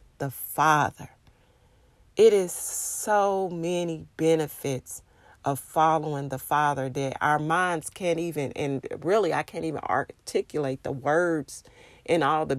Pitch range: 155-230 Hz